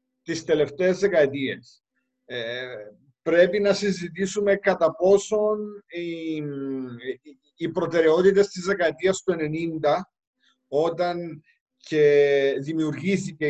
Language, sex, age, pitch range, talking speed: Greek, male, 50-69, 140-185 Hz, 75 wpm